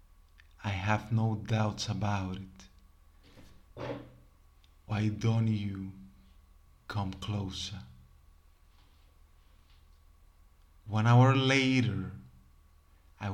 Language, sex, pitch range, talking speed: English, male, 75-105 Hz, 65 wpm